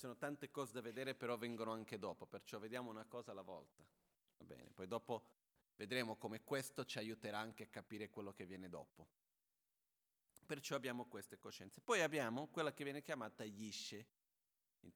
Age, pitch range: 40-59, 105-130 Hz